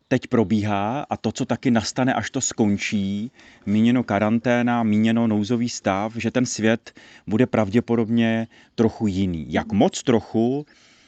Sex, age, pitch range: male, 30-49, 105-125 Hz